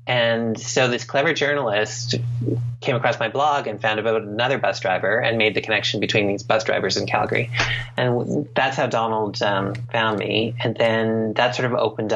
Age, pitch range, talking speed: 30-49, 110-130 Hz, 190 wpm